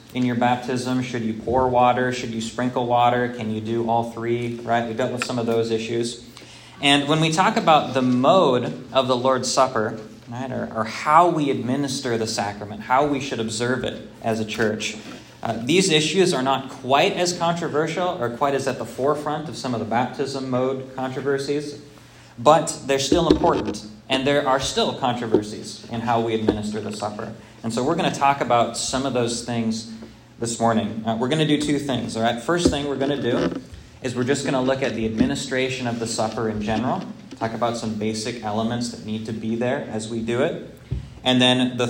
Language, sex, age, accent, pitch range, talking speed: English, male, 20-39, American, 110-130 Hz, 210 wpm